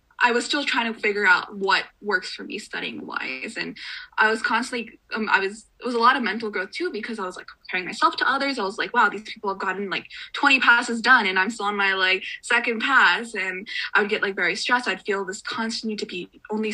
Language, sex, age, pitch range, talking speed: English, female, 10-29, 195-250 Hz, 250 wpm